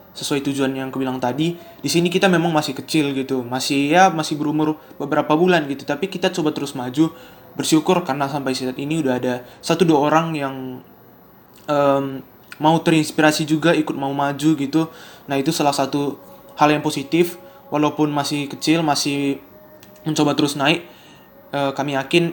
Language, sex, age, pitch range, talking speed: Indonesian, male, 20-39, 135-155 Hz, 165 wpm